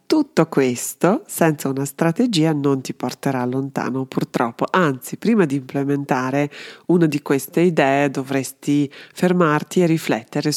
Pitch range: 135-165 Hz